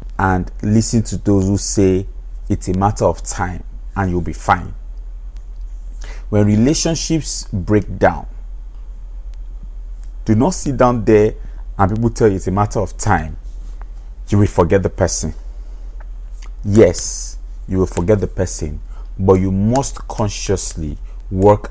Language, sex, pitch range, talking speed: English, male, 90-110 Hz, 135 wpm